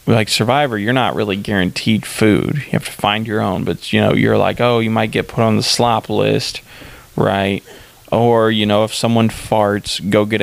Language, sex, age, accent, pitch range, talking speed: English, male, 20-39, American, 105-130 Hz, 205 wpm